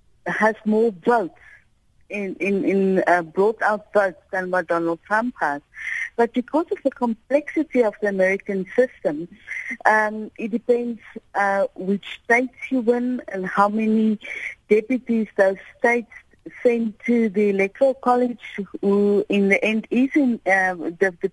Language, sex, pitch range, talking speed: English, female, 195-240 Hz, 140 wpm